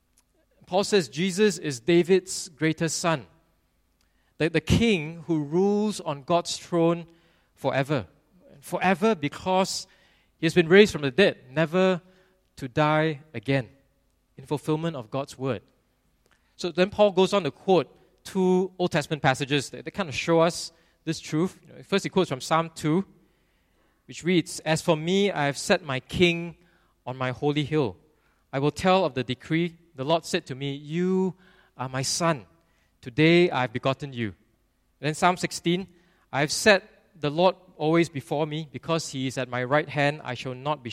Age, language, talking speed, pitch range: 20-39, English, 170 wpm, 130-175 Hz